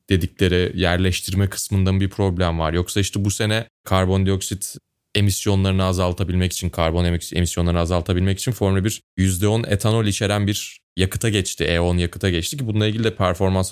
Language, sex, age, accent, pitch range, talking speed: Turkish, male, 20-39, native, 95-130 Hz, 150 wpm